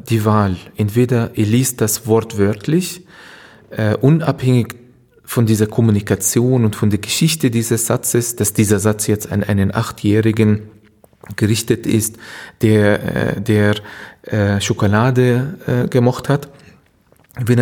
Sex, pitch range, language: male, 110-135 Hz, German